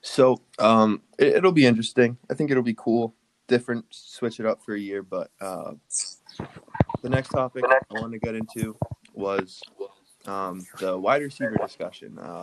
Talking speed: 160 wpm